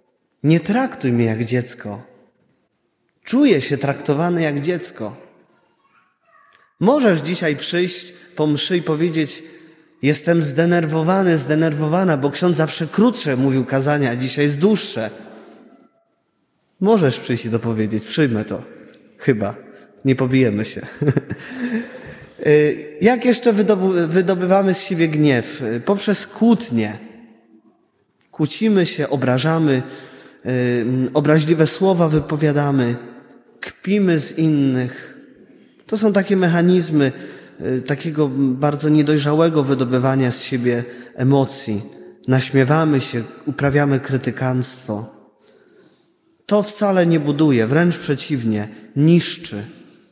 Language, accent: Polish, native